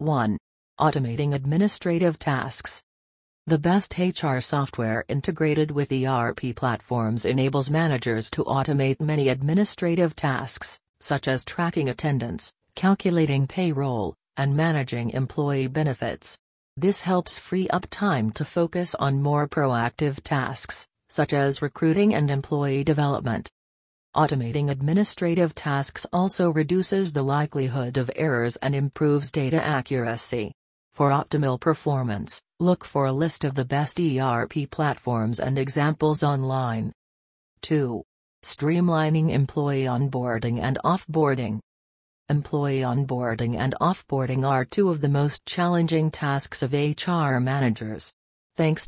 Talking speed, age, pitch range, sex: 115 wpm, 40-59, 125-155 Hz, female